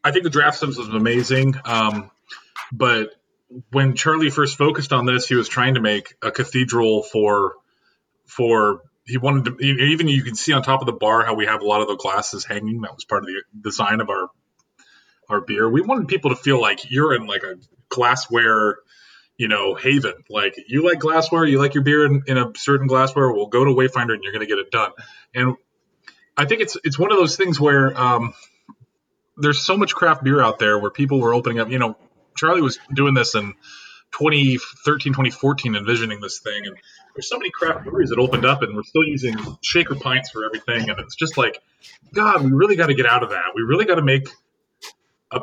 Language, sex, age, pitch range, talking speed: English, male, 30-49, 120-145 Hz, 215 wpm